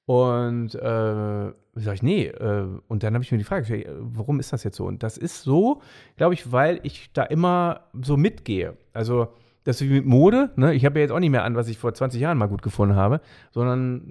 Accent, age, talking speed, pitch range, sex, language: German, 30-49, 235 wpm, 115-155 Hz, male, German